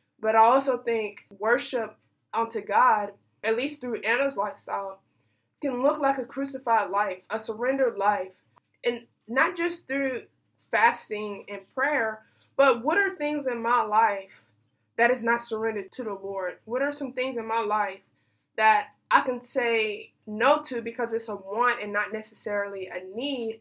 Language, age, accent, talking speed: English, 20-39, American, 165 wpm